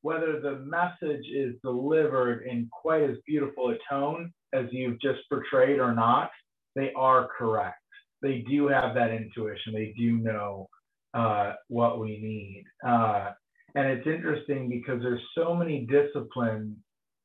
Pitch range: 115-145 Hz